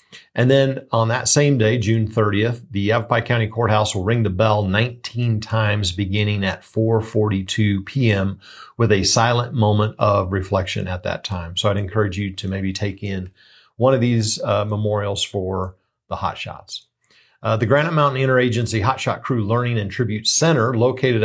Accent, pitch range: American, 105-125 Hz